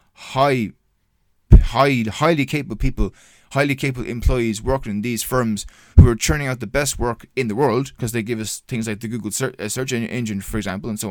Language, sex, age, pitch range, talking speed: English, male, 20-39, 105-125 Hz, 195 wpm